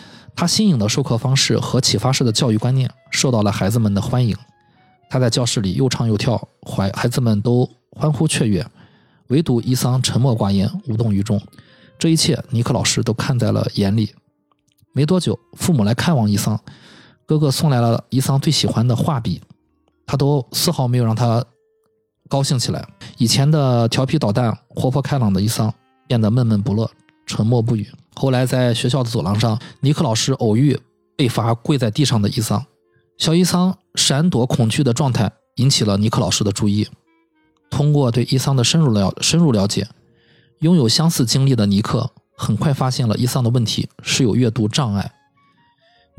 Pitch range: 115-145 Hz